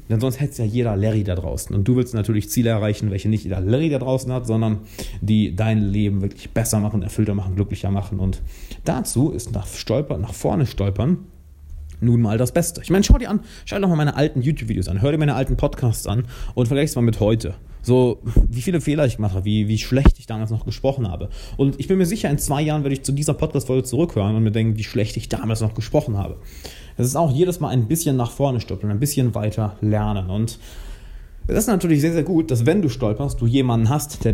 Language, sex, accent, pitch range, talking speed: German, male, German, 105-135 Hz, 240 wpm